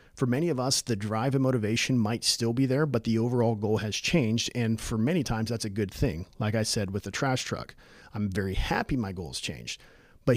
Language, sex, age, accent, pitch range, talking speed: English, male, 40-59, American, 110-135 Hz, 230 wpm